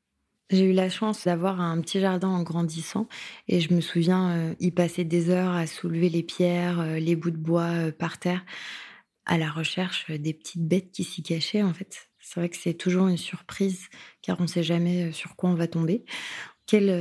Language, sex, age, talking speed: French, female, 20-39, 210 wpm